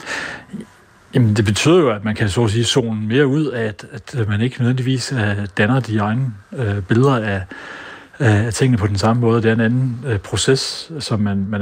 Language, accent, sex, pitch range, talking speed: Danish, native, male, 105-125 Hz, 205 wpm